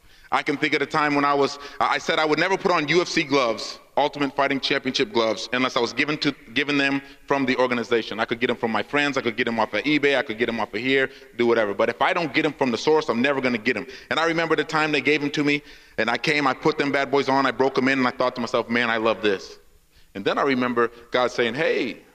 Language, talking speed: English, 290 wpm